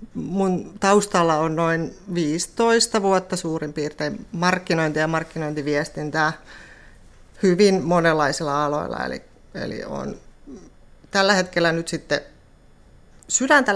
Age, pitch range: 30-49, 155-180 Hz